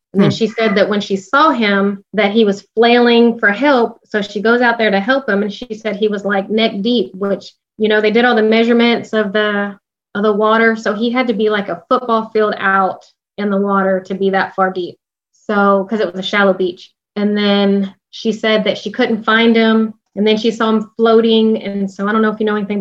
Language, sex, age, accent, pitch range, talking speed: English, female, 20-39, American, 200-225 Hz, 245 wpm